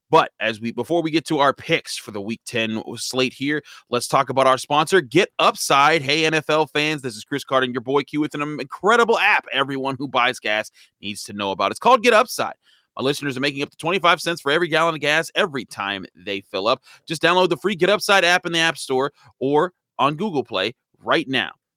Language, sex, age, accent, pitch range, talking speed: English, male, 30-49, American, 130-180 Hz, 230 wpm